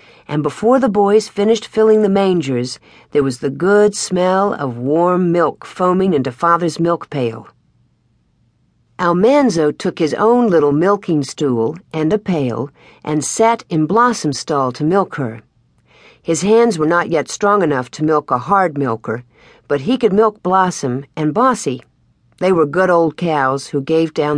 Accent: American